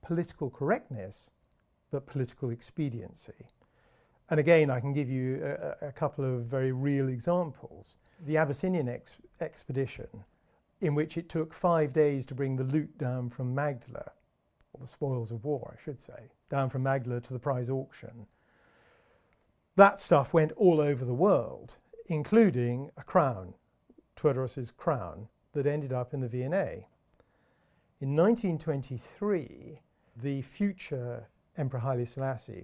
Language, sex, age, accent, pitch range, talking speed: English, male, 50-69, British, 125-155 Hz, 140 wpm